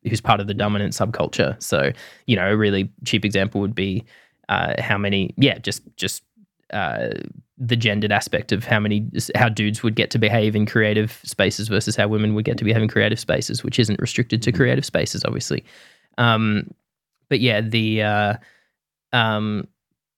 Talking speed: 180 wpm